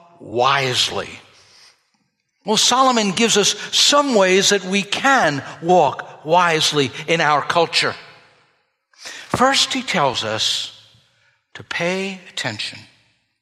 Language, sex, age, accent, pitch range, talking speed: English, male, 60-79, American, 125-180 Hz, 100 wpm